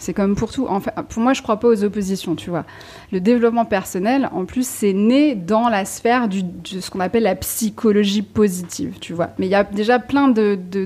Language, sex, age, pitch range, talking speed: French, female, 30-49, 195-245 Hz, 230 wpm